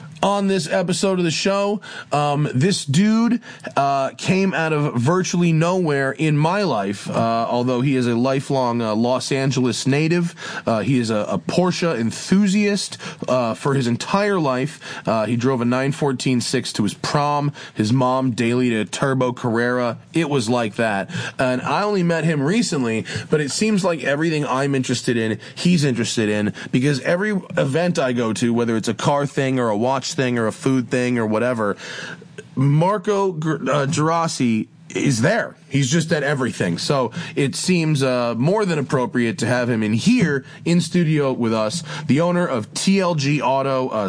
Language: English